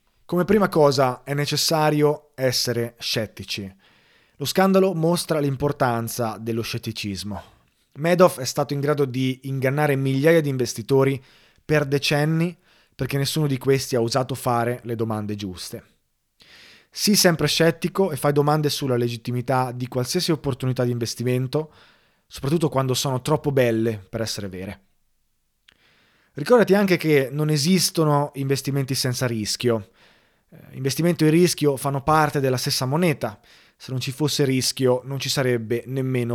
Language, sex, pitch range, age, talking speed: Italian, male, 120-150 Hz, 20-39, 135 wpm